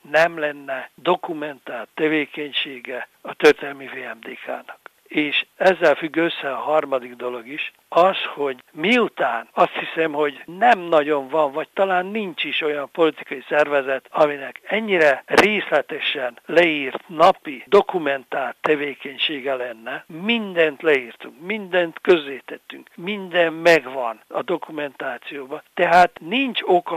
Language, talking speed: Hungarian, 110 wpm